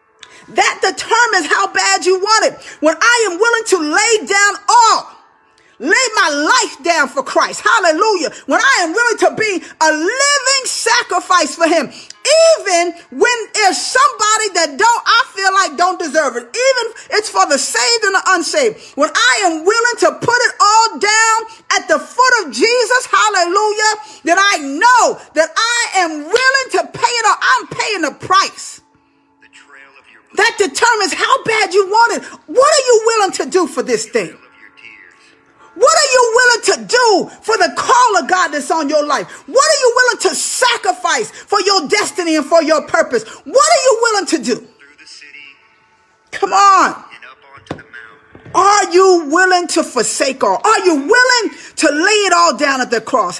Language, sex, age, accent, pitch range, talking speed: English, female, 40-59, American, 335-450 Hz, 170 wpm